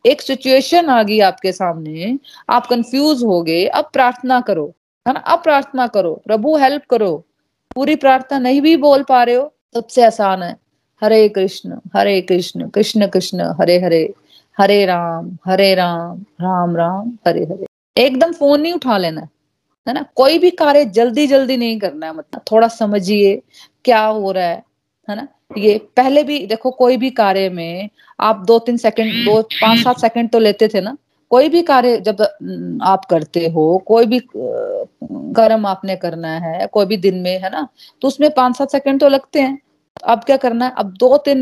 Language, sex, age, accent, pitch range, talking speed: Hindi, female, 30-49, native, 195-265 Hz, 190 wpm